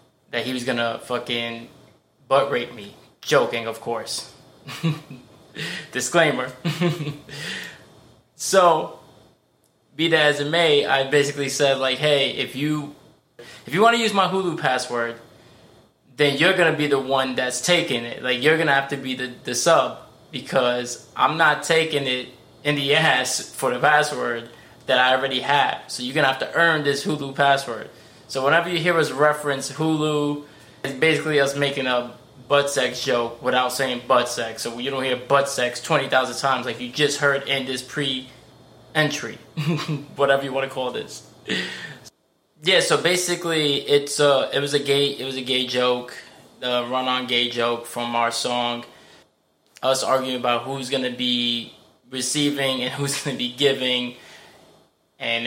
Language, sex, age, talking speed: English, male, 20-39, 170 wpm